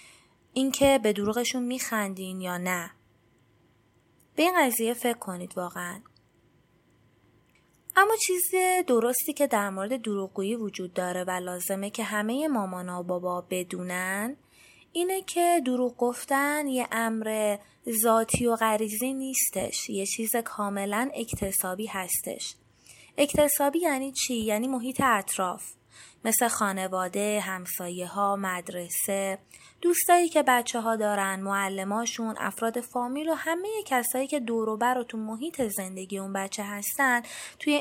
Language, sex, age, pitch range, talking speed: Persian, female, 20-39, 195-270 Hz, 120 wpm